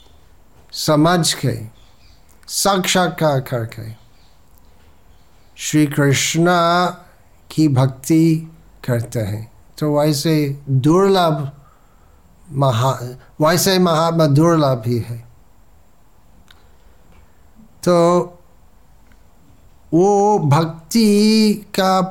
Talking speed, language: 65 wpm, Hindi